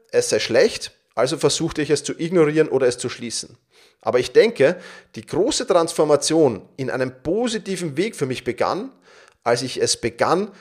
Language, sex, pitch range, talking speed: German, male, 145-220 Hz, 170 wpm